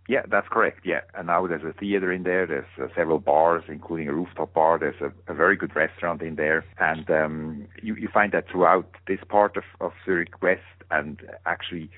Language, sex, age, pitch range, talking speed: English, male, 50-69, 80-95 Hz, 210 wpm